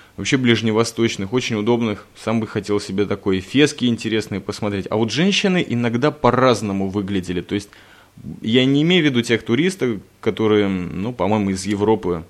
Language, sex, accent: Russian, male, native